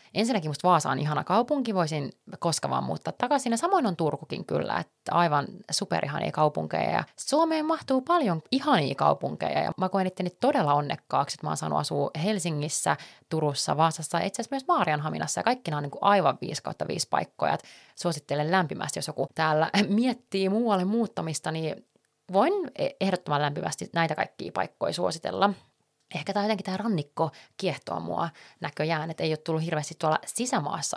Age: 30-49